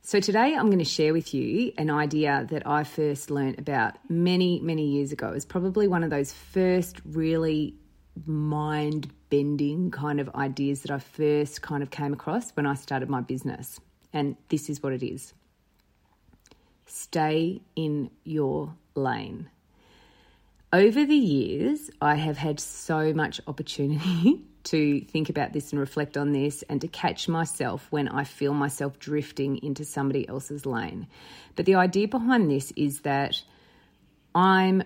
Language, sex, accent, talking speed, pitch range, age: English, female, Australian, 160 wpm, 145-175 Hz, 30-49